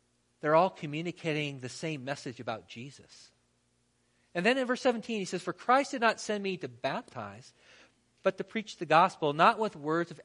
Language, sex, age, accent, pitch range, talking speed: English, male, 40-59, American, 140-195 Hz, 185 wpm